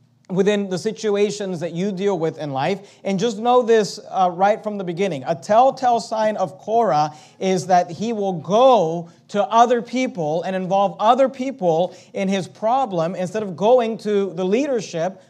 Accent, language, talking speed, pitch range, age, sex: American, English, 175 wpm, 175-230 Hz, 40-59, male